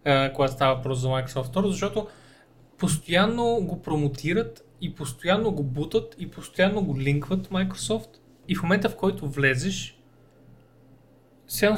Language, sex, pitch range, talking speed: Bulgarian, male, 145-190 Hz, 130 wpm